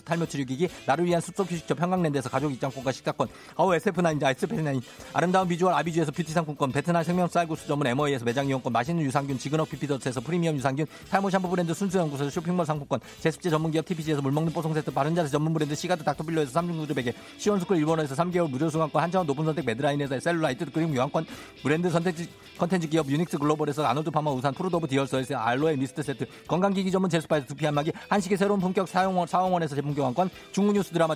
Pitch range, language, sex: 155-215 Hz, Korean, male